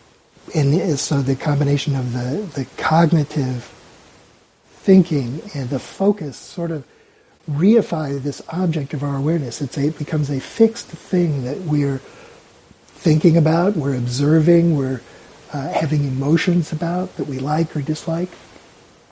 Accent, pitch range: American, 140-170 Hz